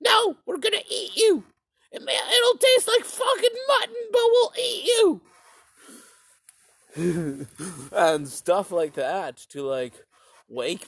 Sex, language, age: male, English, 30-49